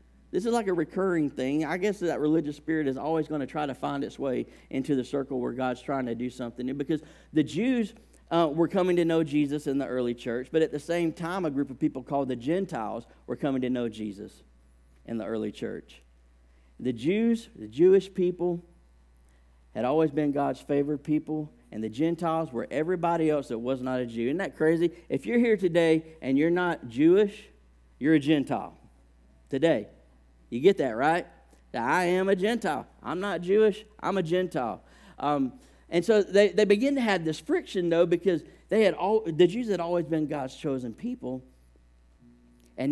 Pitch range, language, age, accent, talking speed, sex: 125-175 Hz, English, 50-69, American, 195 wpm, male